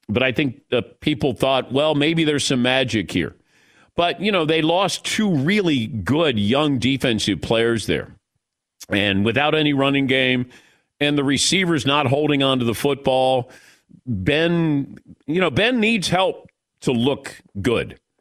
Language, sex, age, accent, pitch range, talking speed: English, male, 50-69, American, 130-175 Hz, 155 wpm